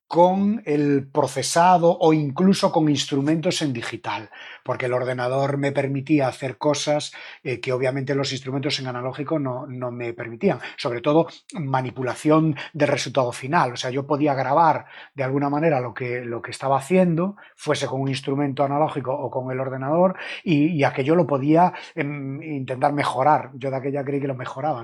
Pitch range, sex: 130-160 Hz, male